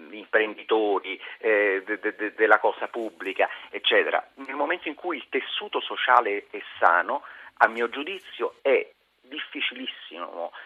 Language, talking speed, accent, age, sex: Italian, 125 wpm, native, 40-59, male